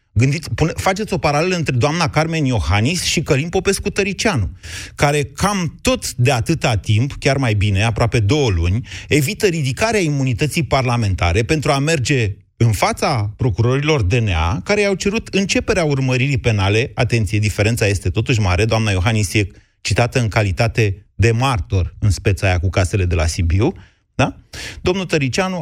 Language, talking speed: Romanian, 150 wpm